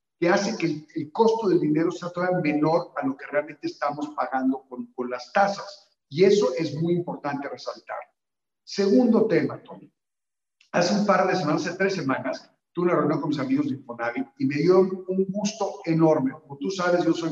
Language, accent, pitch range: Spanish, Mexican, 140-185 Hz